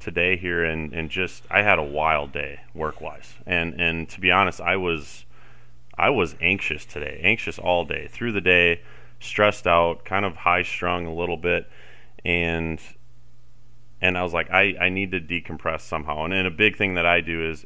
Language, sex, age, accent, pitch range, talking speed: English, male, 30-49, American, 80-95 Hz, 195 wpm